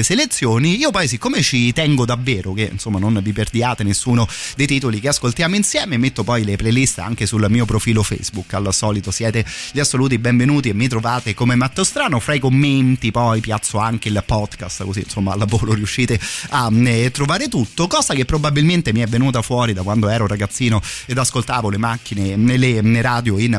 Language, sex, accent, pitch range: Italian, male, native, 110-130 Hz